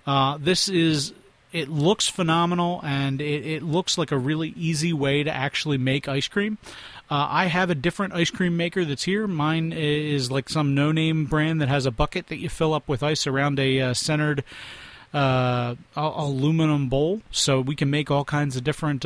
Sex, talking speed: male, 190 wpm